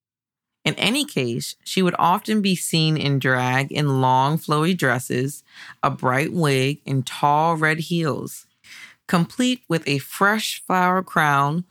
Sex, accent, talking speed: female, American, 140 wpm